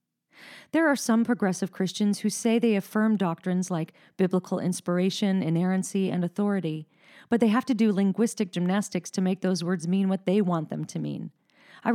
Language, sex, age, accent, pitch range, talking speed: English, female, 40-59, American, 175-225 Hz, 175 wpm